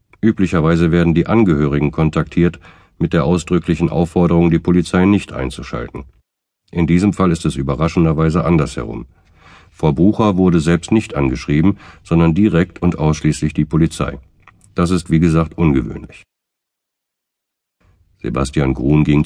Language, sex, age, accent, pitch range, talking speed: German, male, 50-69, German, 75-90 Hz, 125 wpm